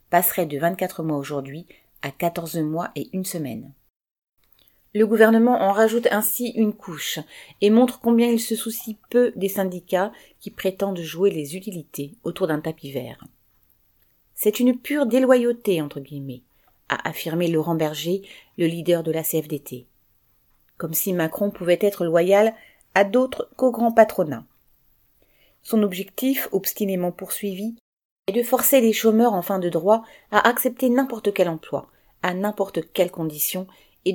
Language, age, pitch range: French, 40-59, 160-210 Hz